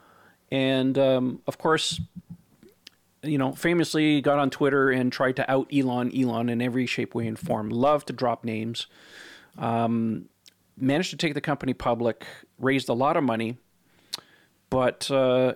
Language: English